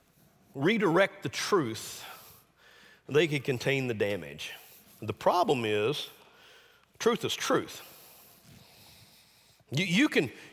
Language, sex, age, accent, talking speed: English, male, 50-69, American, 90 wpm